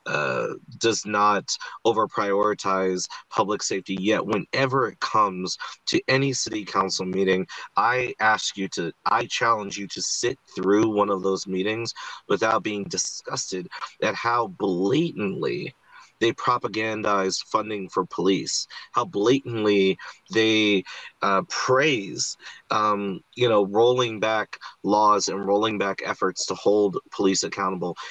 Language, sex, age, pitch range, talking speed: English, male, 30-49, 100-125 Hz, 125 wpm